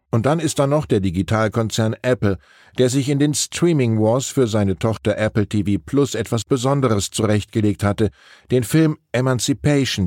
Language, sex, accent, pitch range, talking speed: German, male, German, 100-130 Hz, 160 wpm